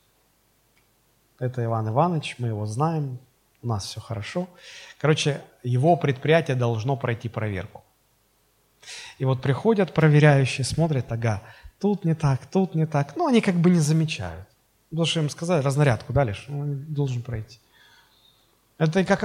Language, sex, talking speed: Russian, male, 145 wpm